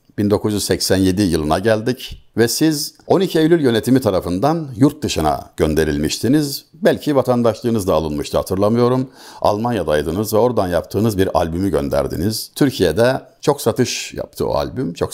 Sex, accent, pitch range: male, native, 90-130 Hz